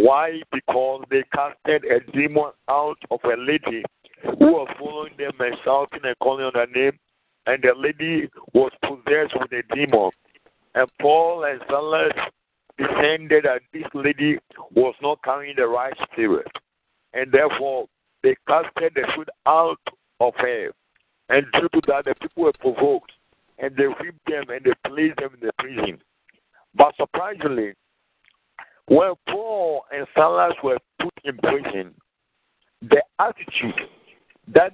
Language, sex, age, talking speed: English, male, 60-79, 145 wpm